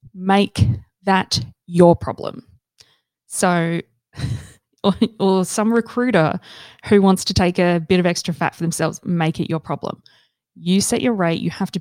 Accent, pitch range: Australian, 160-205 Hz